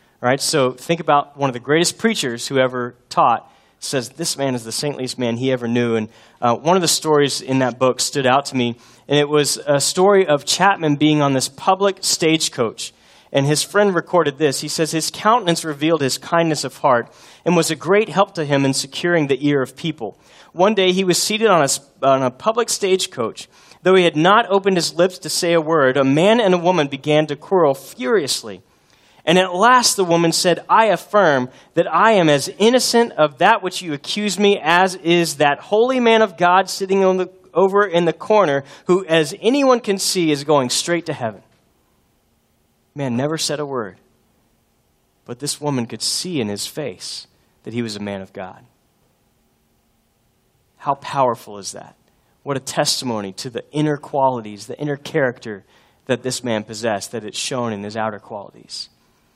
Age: 30-49